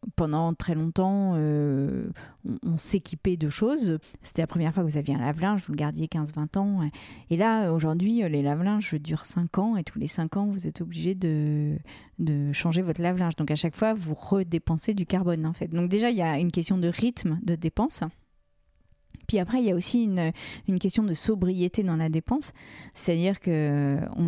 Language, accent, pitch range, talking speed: French, French, 165-205 Hz, 200 wpm